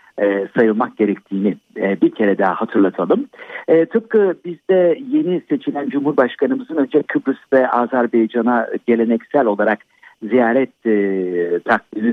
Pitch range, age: 110-160 Hz, 50-69